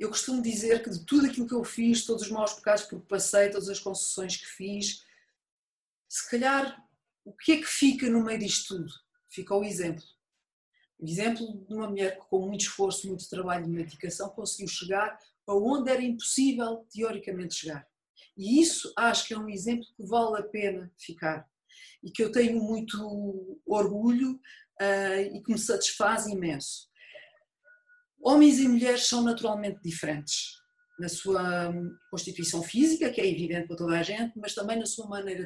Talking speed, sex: 175 wpm, female